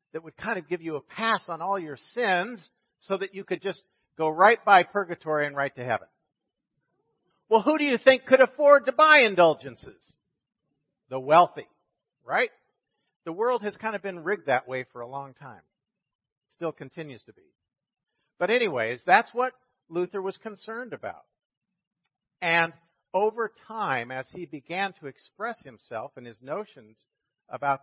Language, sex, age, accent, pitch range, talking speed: English, male, 50-69, American, 135-195 Hz, 165 wpm